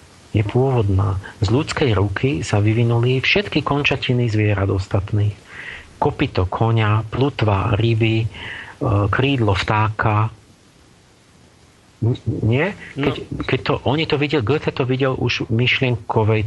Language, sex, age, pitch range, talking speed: Slovak, male, 40-59, 105-130 Hz, 110 wpm